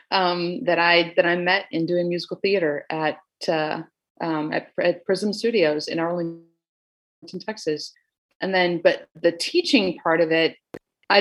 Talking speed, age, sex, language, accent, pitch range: 155 wpm, 30-49, female, English, American, 160-195 Hz